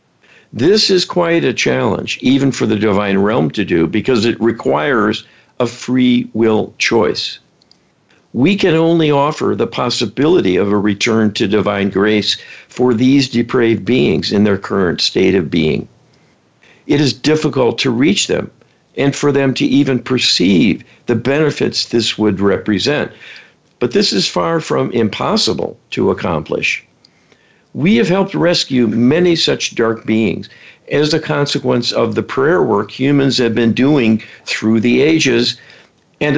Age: 60-79